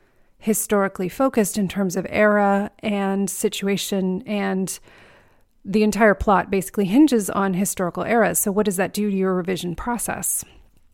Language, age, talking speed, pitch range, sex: English, 30-49, 145 wpm, 185-220 Hz, female